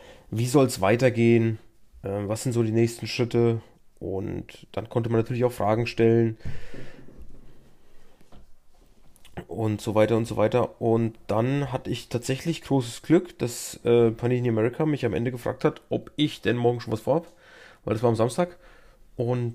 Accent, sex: German, male